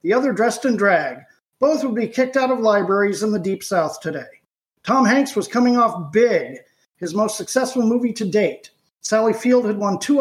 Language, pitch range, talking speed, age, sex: English, 175-245 Hz, 200 wpm, 50-69, male